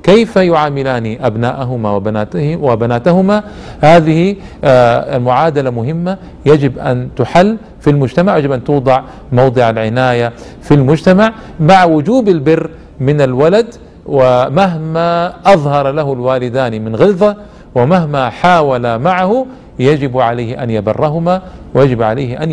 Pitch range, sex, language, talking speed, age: 125-175 Hz, male, Arabic, 105 wpm, 50-69